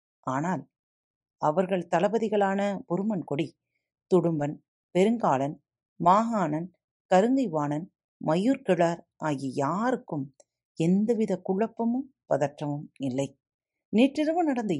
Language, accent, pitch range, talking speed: Tamil, native, 145-215 Hz, 70 wpm